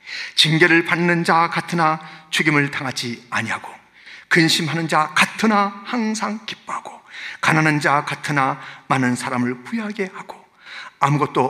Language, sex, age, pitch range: Korean, male, 40-59, 170-270 Hz